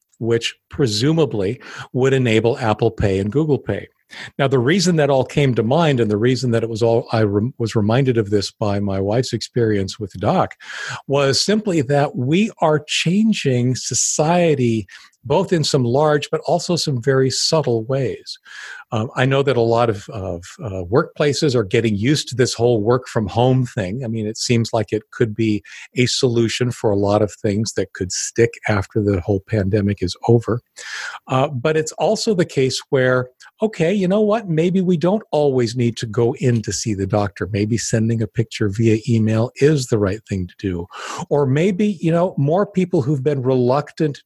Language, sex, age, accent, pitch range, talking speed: English, male, 50-69, American, 110-145 Hz, 190 wpm